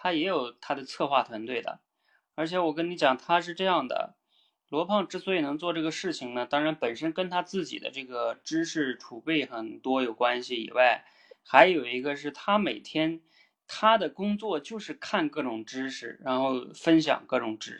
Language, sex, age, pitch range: Chinese, male, 20-39, 150-215 Hz